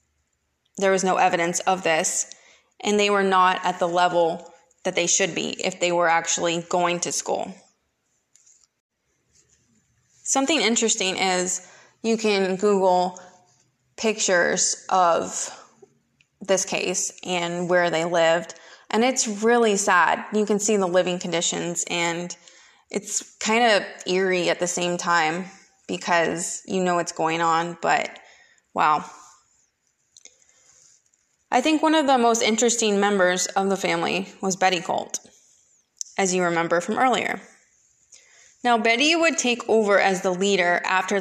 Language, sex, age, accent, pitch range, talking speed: English, female, 20-39, American, 175-215 Hz, 135 wpm